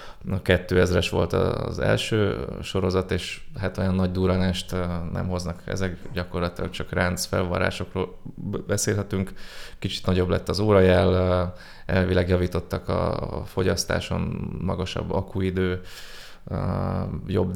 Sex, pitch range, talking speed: male, 90-95 Hz, 105 wpm